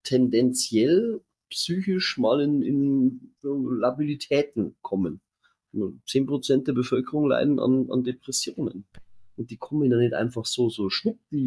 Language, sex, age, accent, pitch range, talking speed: German, male, 30-49, German, 120-170 Hz, 125 wpm